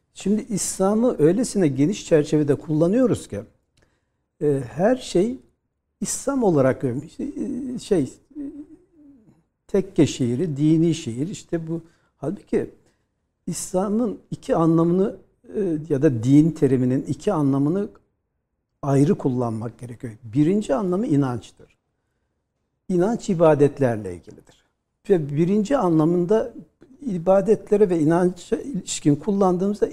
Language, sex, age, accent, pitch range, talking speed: Turkish, male, 60-79, native, 140-185 Hz, 90 wpm